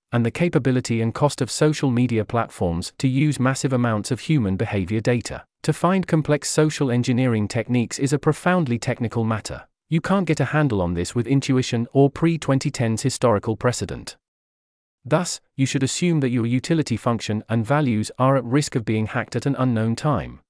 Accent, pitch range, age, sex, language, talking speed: British, 110-140 Hz, 30-49, male, English, 180 wpm